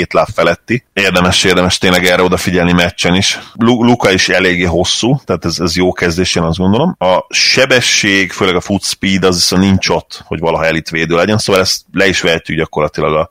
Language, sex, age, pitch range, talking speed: Hungarian, male, 30-49, 85-100 Hz, 195 wpm